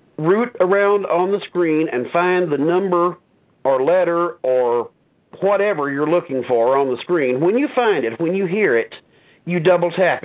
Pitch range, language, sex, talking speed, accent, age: 150-205 Hz, English, male, 175 wpm, American, 50-69